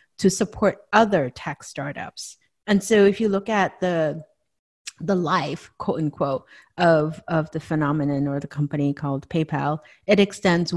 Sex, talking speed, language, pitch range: female, 150 wpm, English, 150-180 Hz